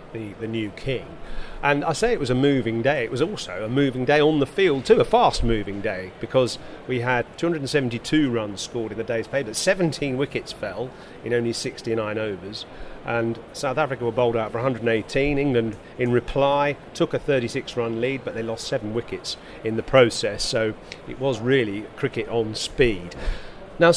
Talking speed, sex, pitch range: 190 wpm, male, 110-135 Hz